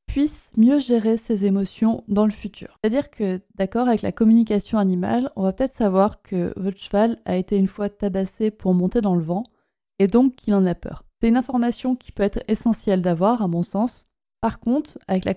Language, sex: French, female